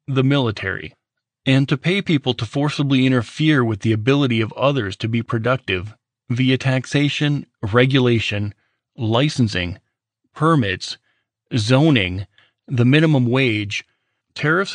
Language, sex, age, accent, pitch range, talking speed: English, male, 30-49, American, 115-140 Hz, 110 wpm